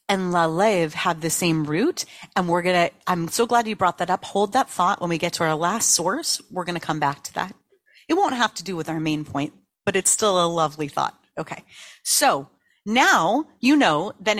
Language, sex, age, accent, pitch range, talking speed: English, female, 30-49, American, 165-225 Hz, 235 wpm